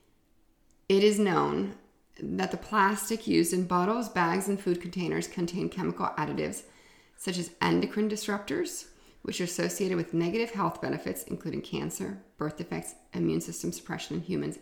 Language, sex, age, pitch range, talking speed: English, female, 30-49, 175-230 Hz, 150 wpm